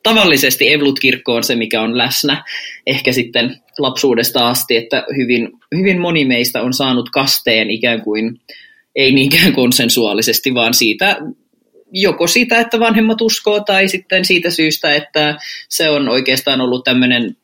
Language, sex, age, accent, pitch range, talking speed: Finnish, male, 20-39, native, 115-145 Hz, 140 wpm